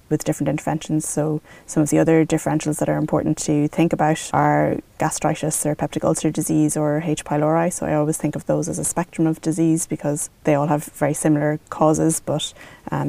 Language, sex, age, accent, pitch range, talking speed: English, female, 20-39, Irish, 150-160 Hz, 200 wpm